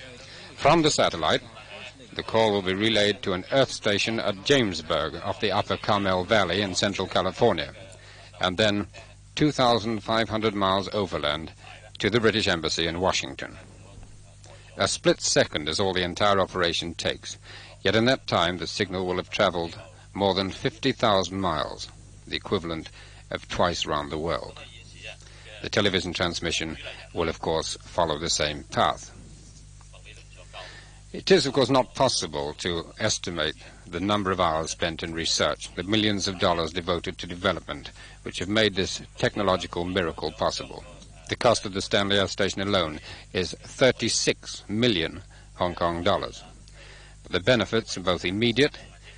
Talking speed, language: 145 wpm, English